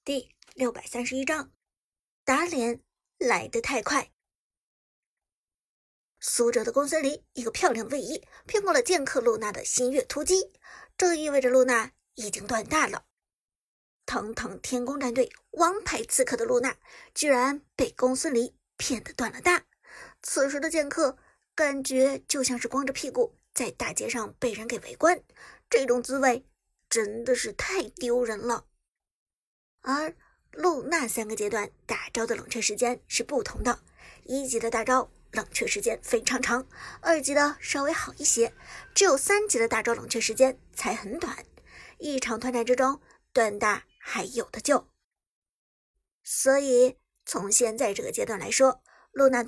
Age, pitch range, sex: 50-69, 245-335 Hz, male